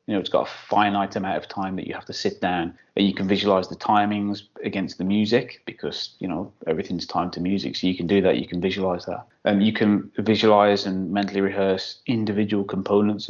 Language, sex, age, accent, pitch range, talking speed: English, male, 20-39, British, 100-115 Hz, 220 wpm